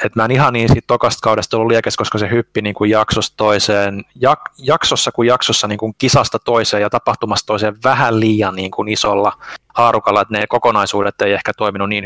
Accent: native